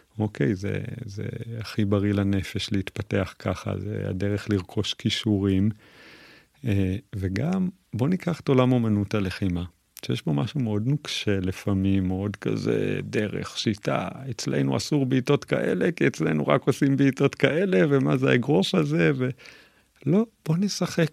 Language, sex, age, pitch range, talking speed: Hebrew, male, 40-59, 100-125 Hz, 140 wpm